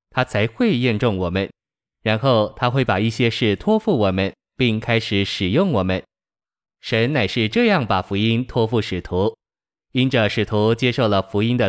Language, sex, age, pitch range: Chinese, male, 20-39, 105-125 Hz